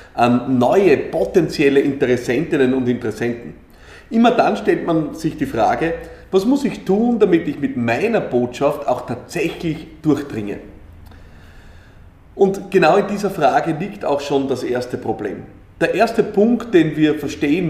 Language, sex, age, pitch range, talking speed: German, male, 30-49, 130-190 Hz, 140 wpm